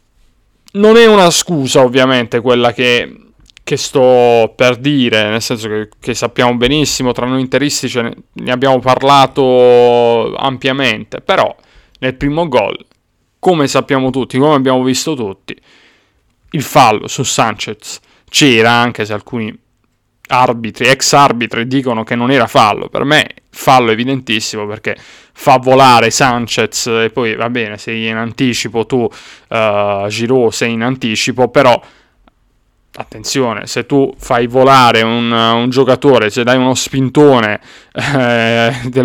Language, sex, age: Italian, male, 30-49